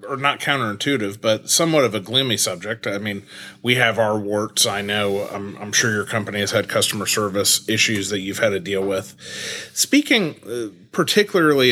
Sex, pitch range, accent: male, 100-130 Hz, American